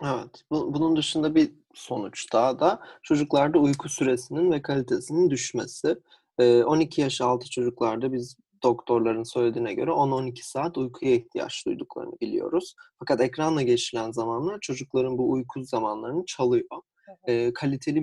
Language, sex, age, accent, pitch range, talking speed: Turkish, male, 30-49, native, 125-155 Hz, 135 wpm